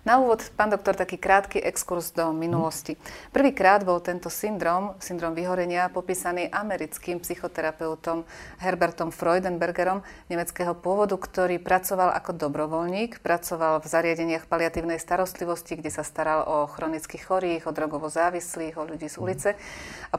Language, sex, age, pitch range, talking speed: Slovak, female, 30-49, 165-195 Hz, 130 wpm